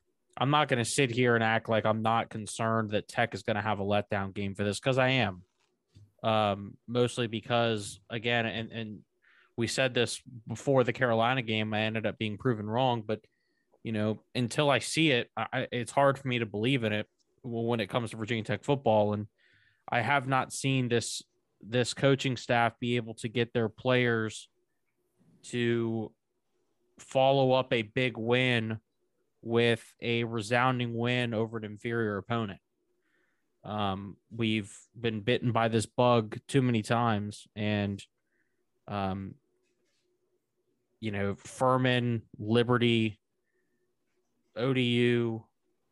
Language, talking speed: English, 150 wpm